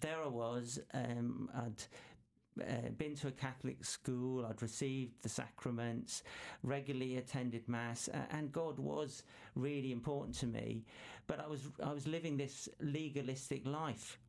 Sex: male